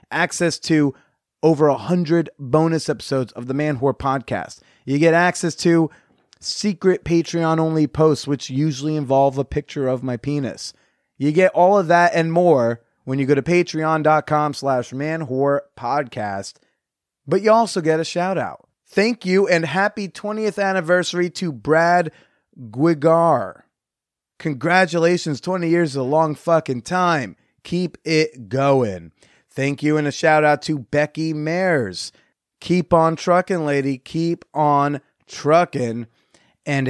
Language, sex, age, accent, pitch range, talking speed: English, male, 30-49, American, 135-170 Hz, 145 wpm